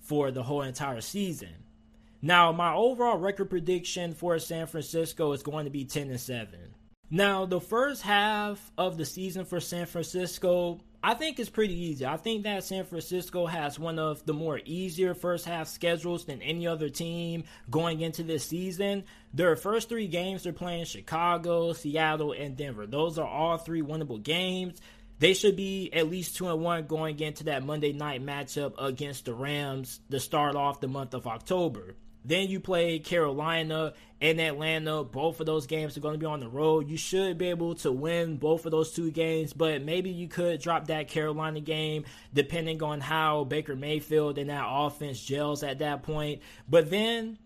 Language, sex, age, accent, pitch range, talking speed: English, male, 20-39, American, 145-175 Hz, 185 wpm